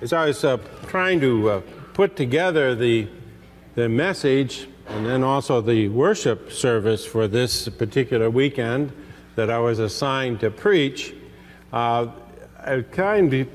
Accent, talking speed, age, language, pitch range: American, 135 wpm, 50-69, English, 120-165 Hz